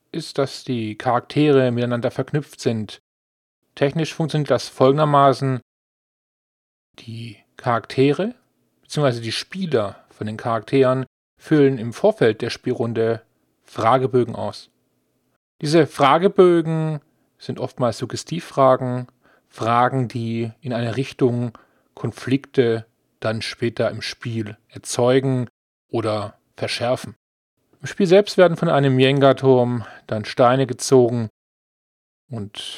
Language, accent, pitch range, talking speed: German, German, 115-145 Hz, 100 wpm